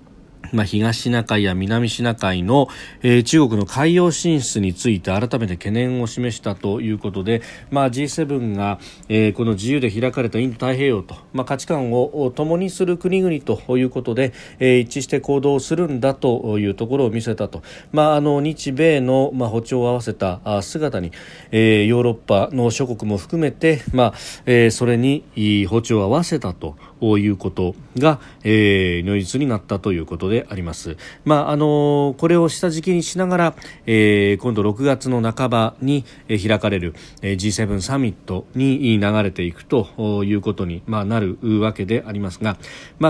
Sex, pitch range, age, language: male, 105-145 Hz, 40-59, Japanese